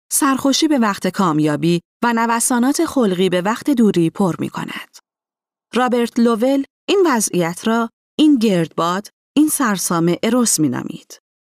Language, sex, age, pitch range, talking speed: Persian, female, 30-49, 175-245 Hz, 130 wpm